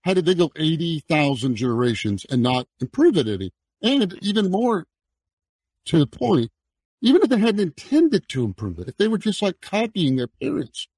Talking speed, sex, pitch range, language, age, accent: 180 wpm, male, 115-170 Hz, English, 50-69, American